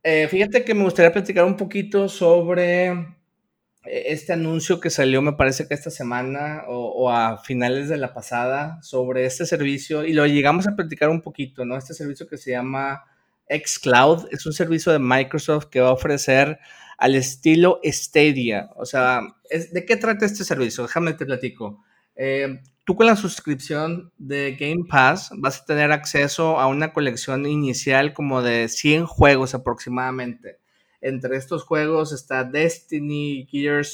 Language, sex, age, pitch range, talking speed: Spanish, male, 30-49, 135-170 Hz, 165 wpm